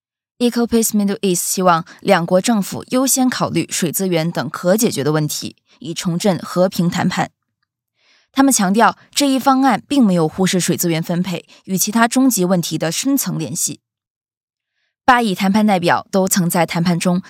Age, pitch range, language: 20-39, 170-225 Hz, Chinese